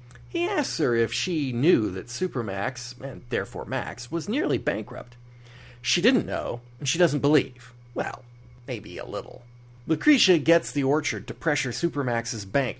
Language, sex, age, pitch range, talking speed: English, male, 40-59, 120-150 Hz, 155 wpm